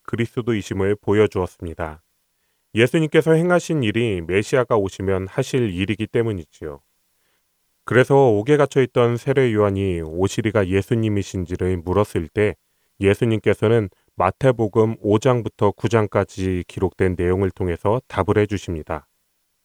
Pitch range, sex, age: 95-120 Hz, male, 30-49